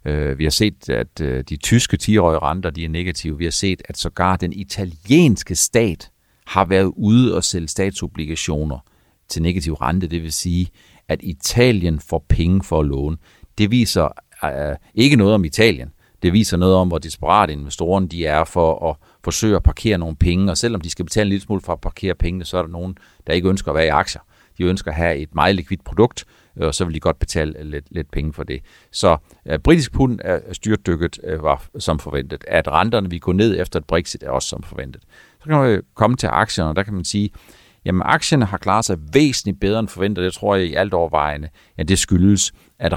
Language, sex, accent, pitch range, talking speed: Danish, male, native, 80-105 Hz, 210 wpm